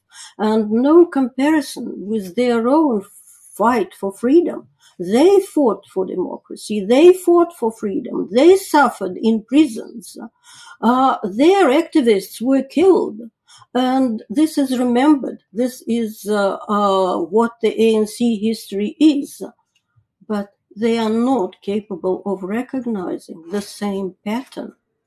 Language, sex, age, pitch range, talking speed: English, female, 50-69, 195-260 Hz, 115 wpm